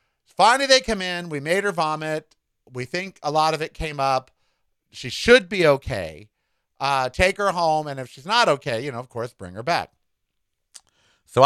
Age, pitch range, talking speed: 50-69, 120-175 Hz, 195 wpm